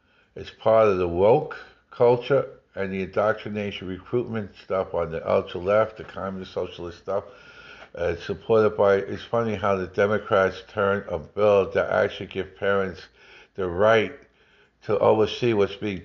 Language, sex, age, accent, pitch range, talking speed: English, male, 60-79, American, 95-120 Hz, 145 wpm